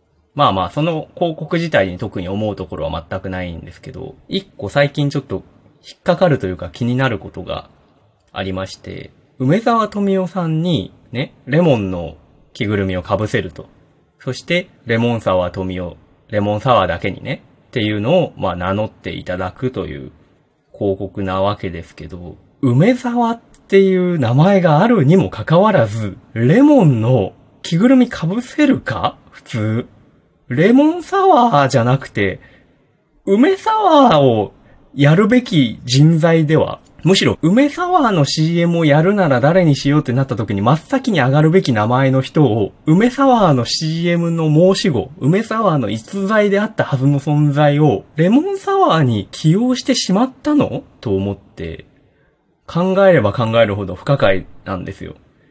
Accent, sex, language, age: native, male, Japanese, 20-39